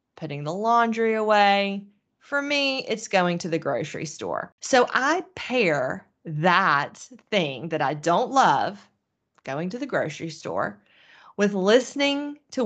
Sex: female